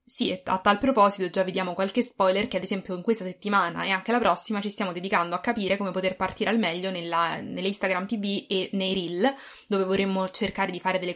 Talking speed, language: 215 wpm, English